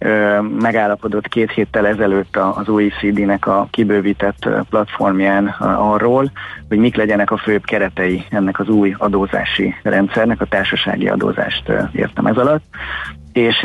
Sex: male